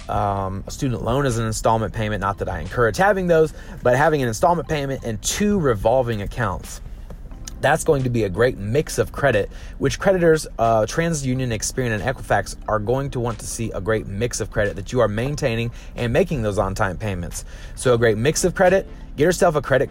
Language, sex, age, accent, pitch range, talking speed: English, male, 30-49, American, 105-140 Hz, 210 wpm